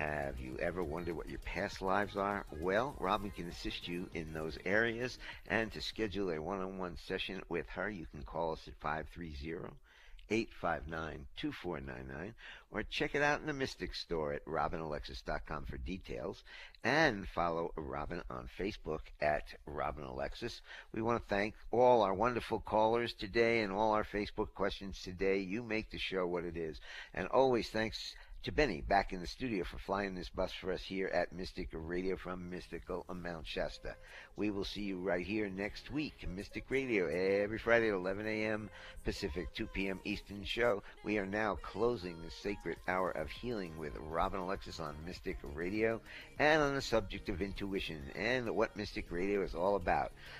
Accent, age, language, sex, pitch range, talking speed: American, 60-79, English, male, 80-105 Hz, 170 wpm